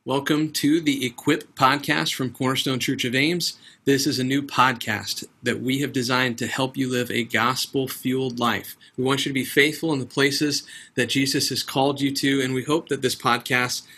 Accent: American